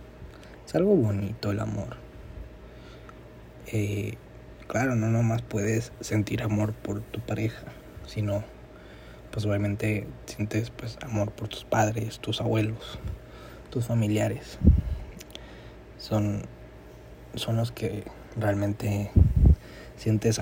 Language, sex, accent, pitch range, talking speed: Danish, male, Mexican, 100-115 Hz, 100 wpm